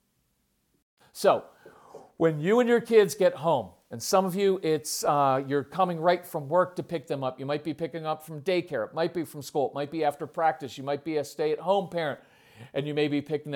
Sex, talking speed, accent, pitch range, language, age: male, 225 wpm, American, 150-195 Hz, English, 40-59